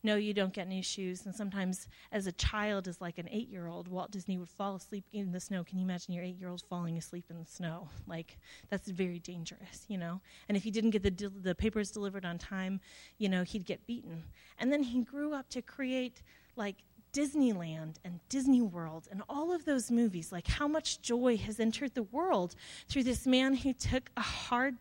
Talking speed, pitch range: 210 wpm, 195-270 Hz